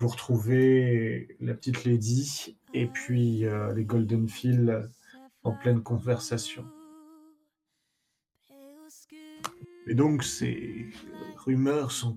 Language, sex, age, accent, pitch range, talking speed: French, male, 40-59, French, 120-140 Hz, 90 wpm